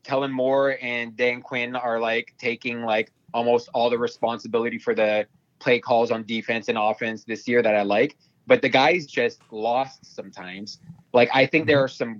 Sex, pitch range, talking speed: male, 125-160 Hz, 185 wpm